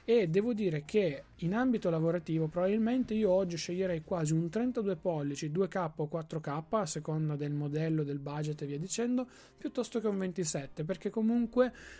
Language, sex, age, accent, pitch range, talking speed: Italian, male, 30-49, native, 160-195 Hz, 165 wpm